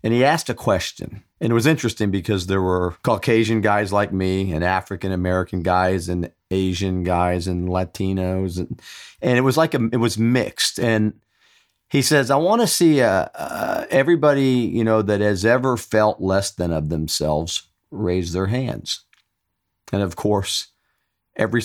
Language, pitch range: English, 90-115 Hz